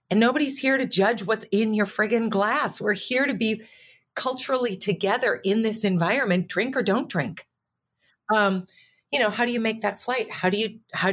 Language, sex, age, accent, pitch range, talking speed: English, female, 40-59, American, 165-210 Hz, 195 wpm